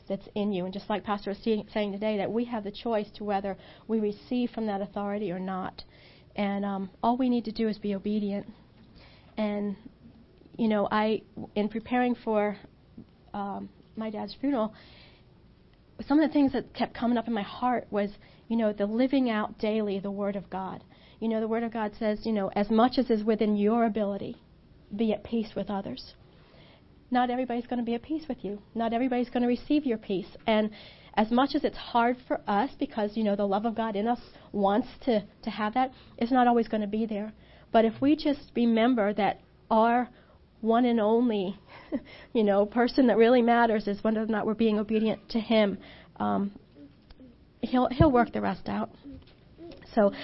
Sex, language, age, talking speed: female, English, 40-59, 200 wpm